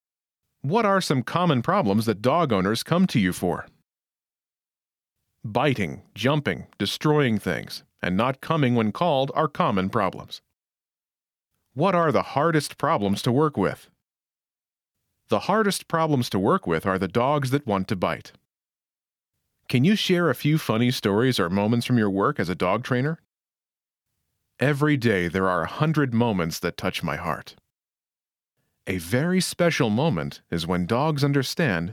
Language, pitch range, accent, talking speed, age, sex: English, 105-155 Hz, American, 150 wpm, 40-59, male